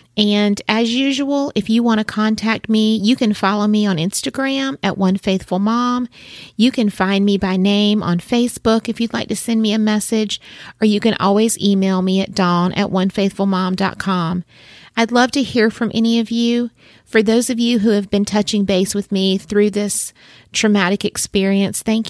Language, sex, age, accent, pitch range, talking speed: English, female, 30-49, American, 185-220 Hz, 180 wpm